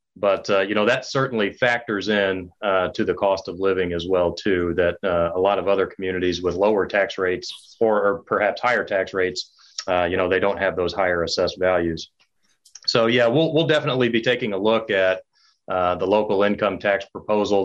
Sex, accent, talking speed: male, American, 205 wpm